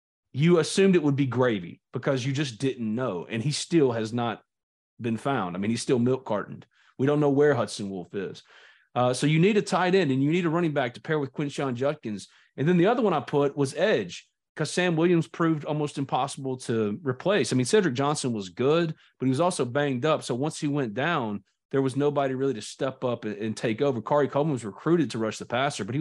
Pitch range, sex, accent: 120-155 Hz, male, American